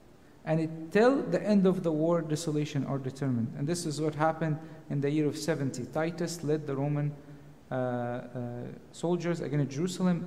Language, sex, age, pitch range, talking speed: English, male, 50-69, 135-165 Hz, 170 wpm